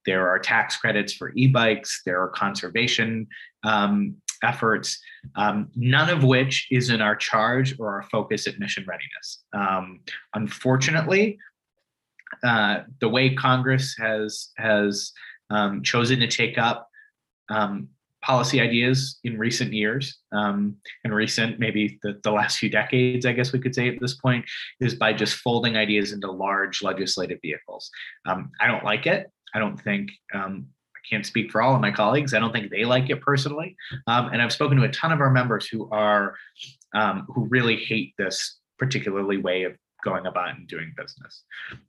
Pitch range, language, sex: 105-130 Hz, English, male